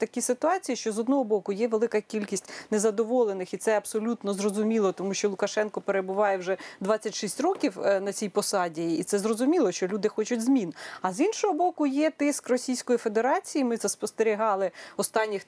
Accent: native